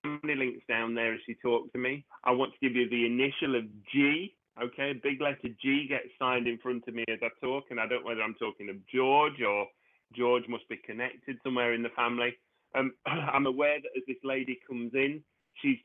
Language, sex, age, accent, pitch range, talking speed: English, male, 30-49, British, 120-150 Hz, 225 wpm